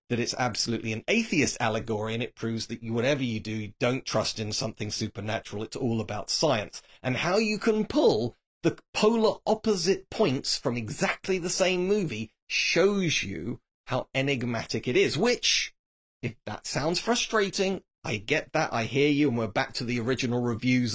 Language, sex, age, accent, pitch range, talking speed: English, male, 30-49, British, 115-180 Hz, 180 wpm